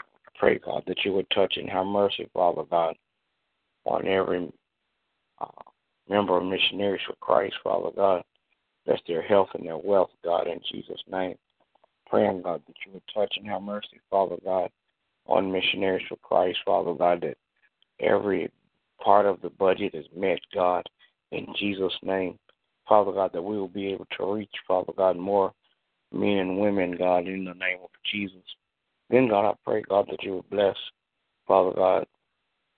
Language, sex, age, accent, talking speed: English, male, 60-79, American, 170 wpm